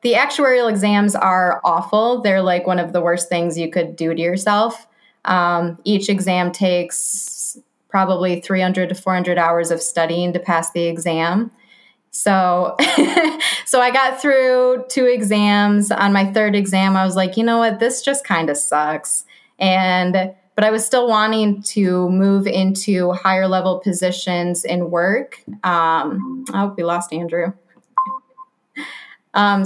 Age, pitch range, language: 20-39, 175-215 Hz, English